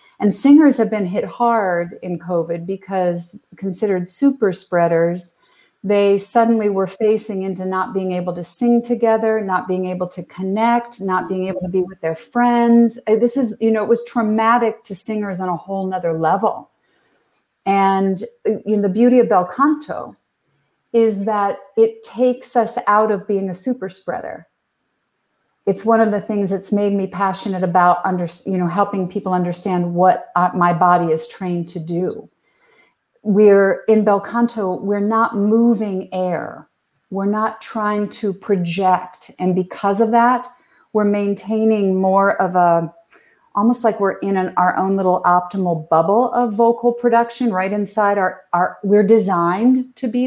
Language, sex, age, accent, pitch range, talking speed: English, female, 40-59, American, 185-230 Hz, 160 wpm